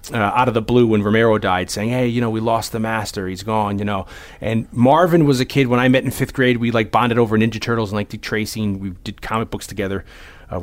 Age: 30-49